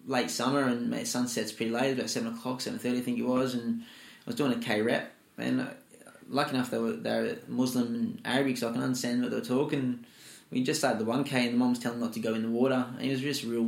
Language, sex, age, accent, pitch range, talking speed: English, male, 10-29, Australian, 115-130 Hz, 280 wpm